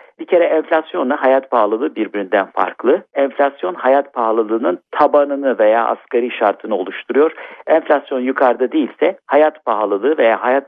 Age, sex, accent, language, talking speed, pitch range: 60-79, male, native, Turkish, 125 wpm, 130-195 Hz